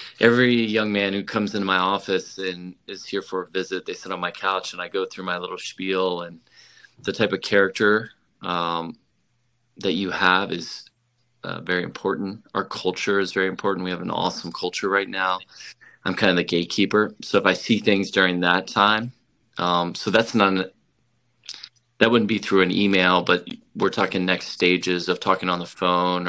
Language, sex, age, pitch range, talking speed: English, male, 20-39, 90-105 Hz, 190 wpm